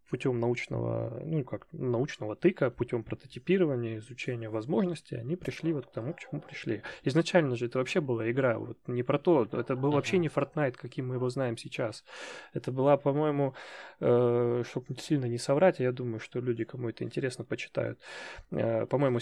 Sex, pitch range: male, 120-145 Hz